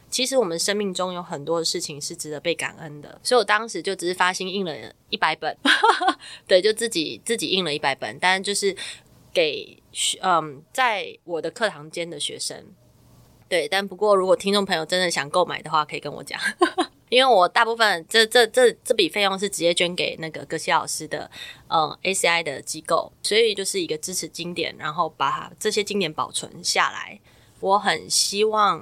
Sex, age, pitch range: female, 20-39, 165-225 Hz